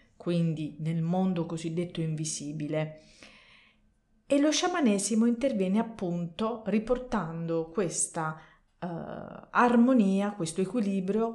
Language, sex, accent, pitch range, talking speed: Italian, female, native, 165-225 Hz, 85 wpm